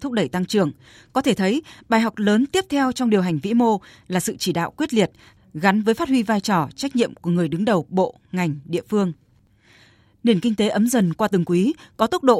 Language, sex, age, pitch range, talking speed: Vietnamese, female, 20-39, 170-225 Hz, 240 wpm